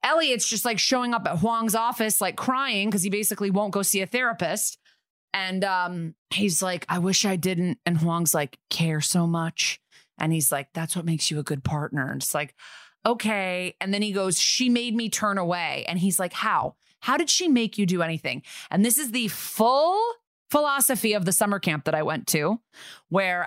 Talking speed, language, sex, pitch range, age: 205 wpm, English, female, 175-215 Hz, 20-39